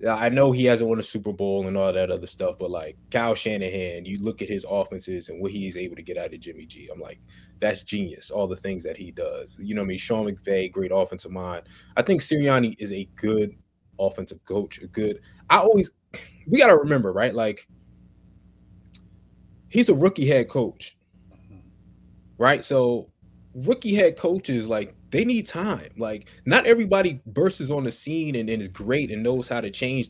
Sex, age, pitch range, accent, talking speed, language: male, 20-39, 100-130 Hz, American, 200 wpm, English